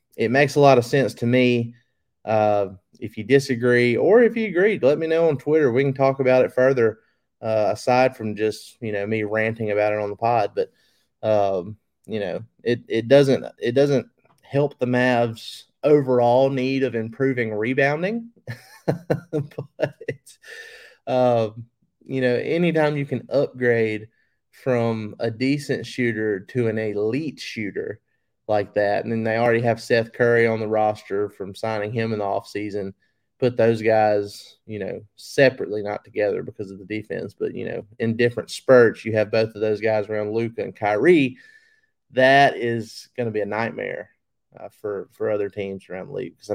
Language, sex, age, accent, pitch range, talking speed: English, male, 30-49, American, 110-130 Hz, 175 wpm